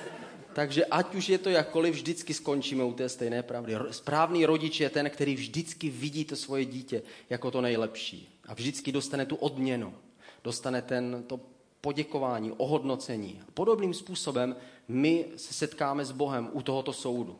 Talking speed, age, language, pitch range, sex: 150 wpm, 30-49, Czech, 120-150 Hz, male